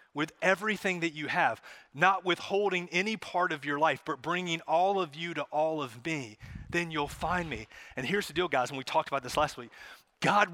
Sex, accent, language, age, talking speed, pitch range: male, American, English, 30-49, 215 wpm, 150-200 Hz